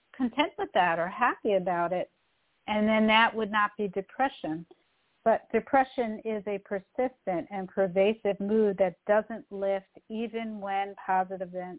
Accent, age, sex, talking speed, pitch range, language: American, 50-69, female, 145 wpm, 190-225 Hz, English